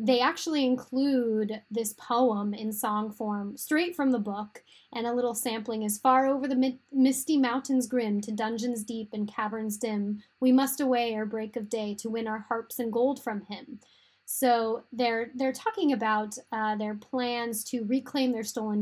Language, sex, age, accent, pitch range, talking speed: English, female, 10-29, American, 215-255 Hz, 180 wpm